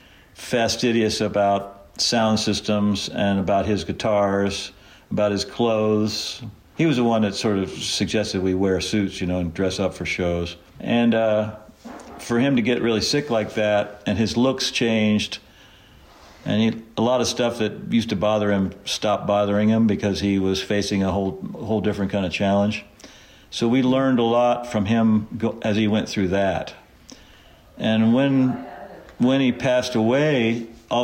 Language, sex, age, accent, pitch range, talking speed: English, male, 60-79, American, 100-115 Hz, 165 wpm